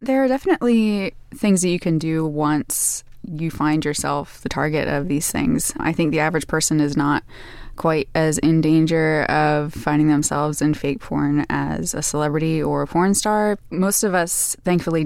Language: English